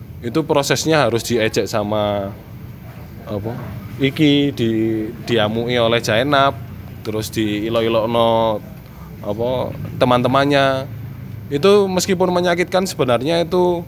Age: 20-39